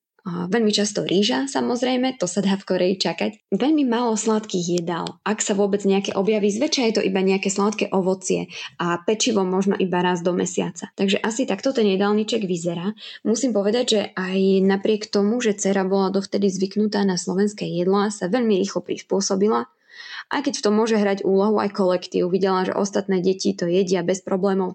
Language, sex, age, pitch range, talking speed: Slovak, female, 20-39, 190-215 Hz, 180 wpm